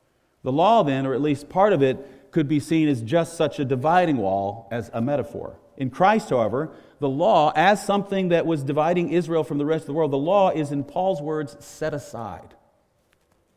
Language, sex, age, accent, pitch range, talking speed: English, male, 40-59, American, 130-175 Hz, 205 wpm